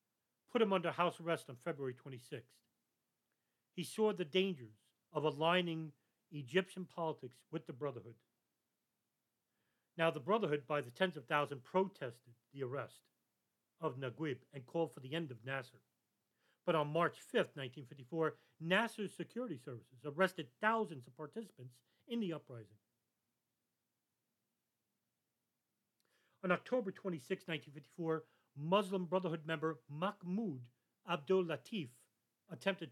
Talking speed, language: 120 wpm, English